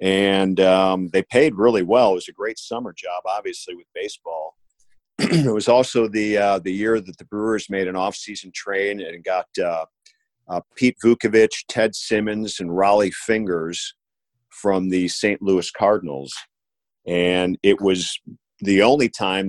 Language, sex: English, male